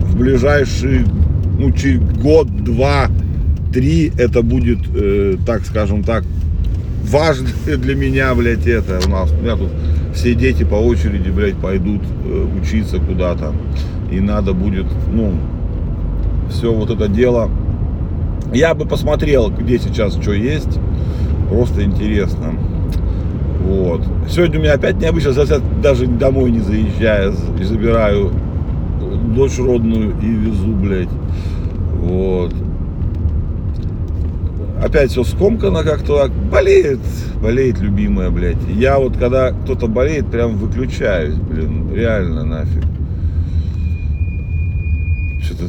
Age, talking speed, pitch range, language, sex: 40-59, 110 wpm, 80-100 Hz, Russian, male